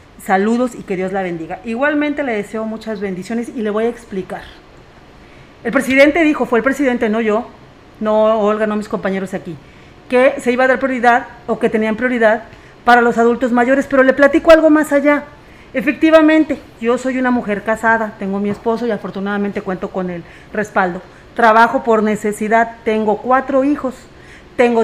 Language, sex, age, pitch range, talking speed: Spanish, female, 40-59, 215-255 Hz, 175 wpm